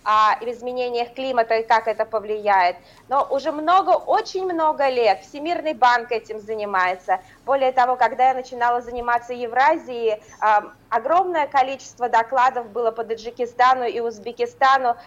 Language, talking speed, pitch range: Russian, 125 wpm, 225-275 Hz